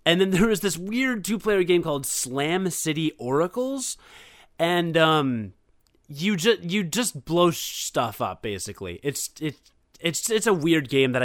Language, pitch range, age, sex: English, 125-170 Hz, 20-39, male